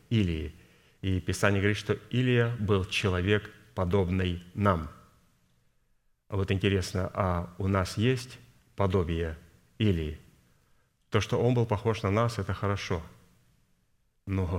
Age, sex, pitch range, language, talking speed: 30-49, male, 95-110 Hz, Russian, 115 wpm